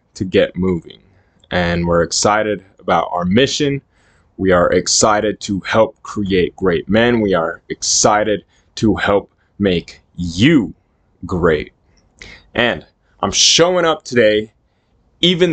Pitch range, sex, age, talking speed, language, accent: 95-125 Hz, male, 20-39, 120 wpm, English, American